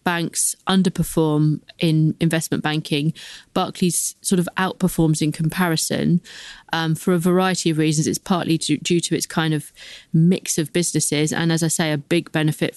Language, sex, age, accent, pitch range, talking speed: English, female, 30-49, British, 160-195 Hz, 160 wpm